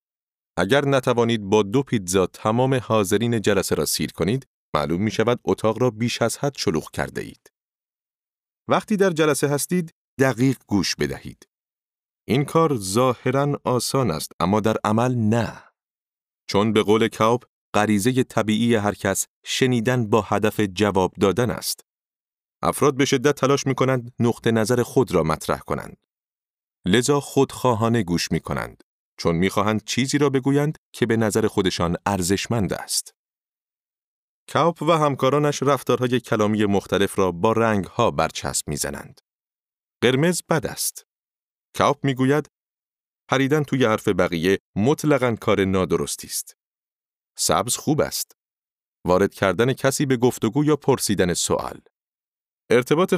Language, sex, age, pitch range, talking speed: Persian, male, 30-49, 105-135 Hz, 130 wpm